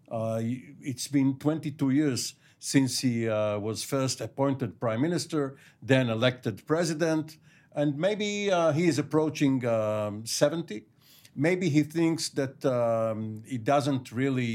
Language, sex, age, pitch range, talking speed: English, male, 50-69, 120-150 Hz, 130 wpm